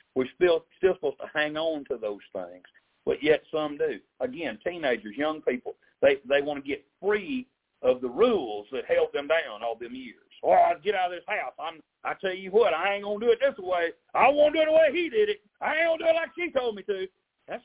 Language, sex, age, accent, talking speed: English, male, 50-69, American, 255 wpm